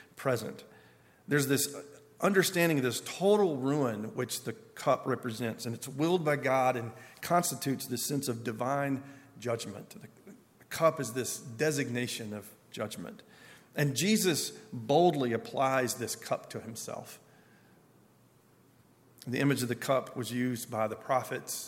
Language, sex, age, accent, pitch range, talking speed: English, male, 40-59, American, 120-145 Hz, 135 wpm